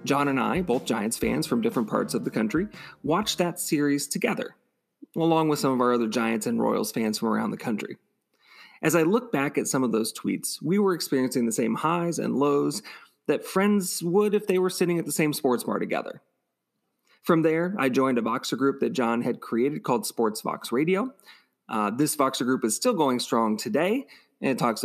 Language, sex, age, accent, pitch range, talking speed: English, male, 30-49, American, 130-180 Hz, 210 wpm